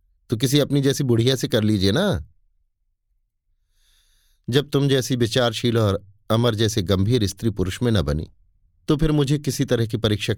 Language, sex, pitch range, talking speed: Hindi, male, 90-130 Hz, 170 wpm